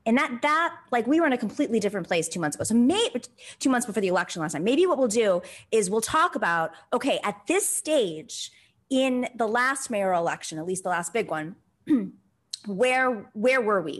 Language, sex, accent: English, female, American